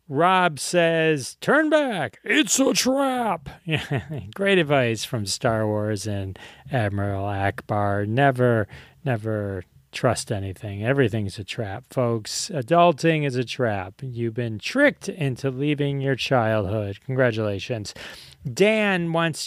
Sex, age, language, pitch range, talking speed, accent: male, 30-49, English, 115-165 Hz, 115 wpm, American